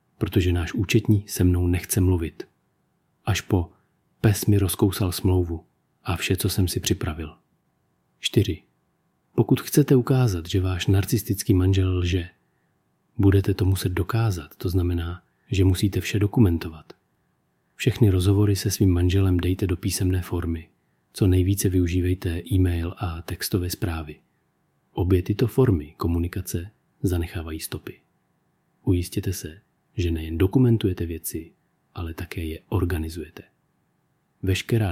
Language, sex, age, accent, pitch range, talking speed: Czech, male, 40-59, native, 90-110 Hz, 120 wpm